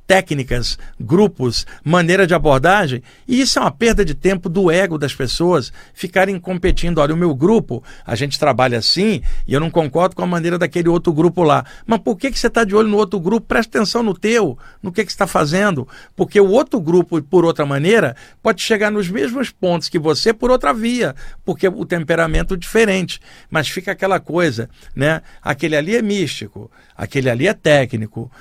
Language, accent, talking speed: Portuguese, Brazilian, 190 wpm